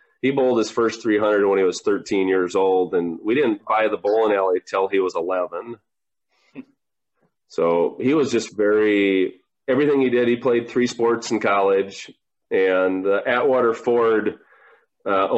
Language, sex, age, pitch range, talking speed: English, male, 30-49, 95-130 Hz, 165 wpm